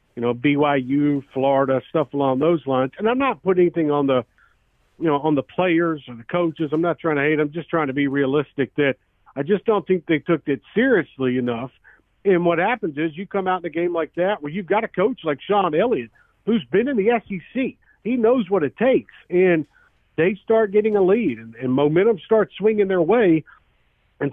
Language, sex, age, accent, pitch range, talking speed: English, male, 50-69, American, 145-195 Hz, 220 wpm